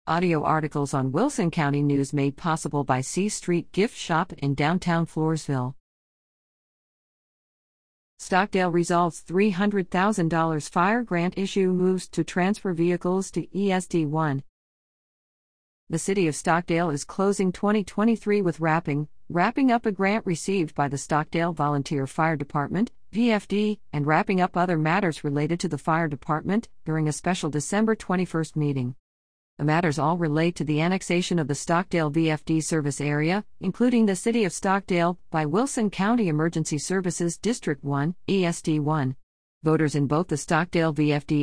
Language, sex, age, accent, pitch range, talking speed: English, female, 50-69, American, 150-190 Hz, 140 wpm